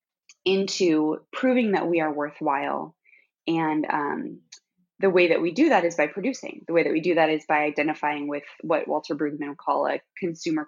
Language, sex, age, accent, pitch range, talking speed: English, female, 20-39, American, 160-225 Hz, 185 wpm